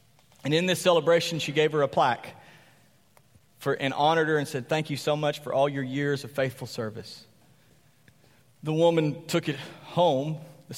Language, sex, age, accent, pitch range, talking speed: English, male, 40-59, American, 140-165 Hz, 175 wpm